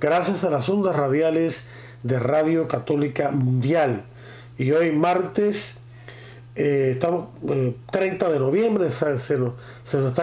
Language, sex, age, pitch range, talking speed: Spanish, male, 40-59, 130-180 Hz, 130 wpm